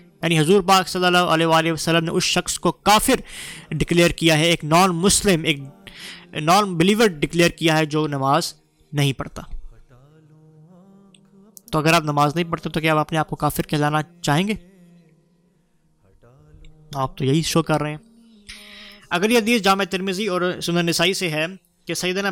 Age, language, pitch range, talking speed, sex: 20-39, Urdu, 155-180 Hz, 135 wpm, male